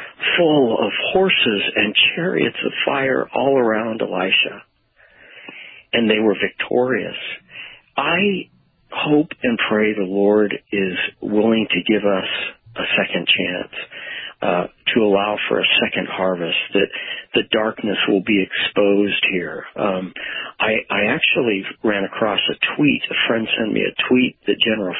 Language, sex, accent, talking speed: English, male, American, 140 wpm